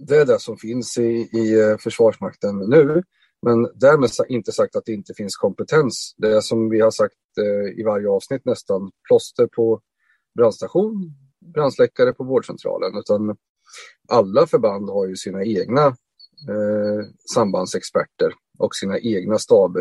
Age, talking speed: 30-49, 140 wpm